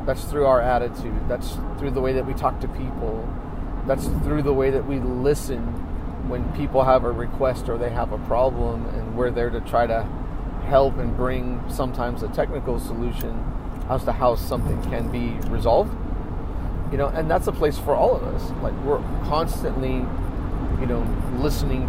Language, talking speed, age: English, 180 wpm, 30-49